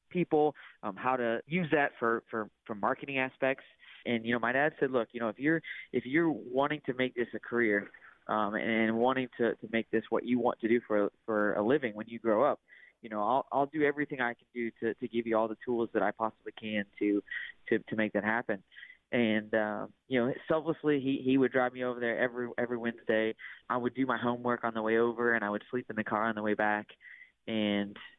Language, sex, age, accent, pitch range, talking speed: English, male, 20-39, American, 110-130 Hz, 240 wpm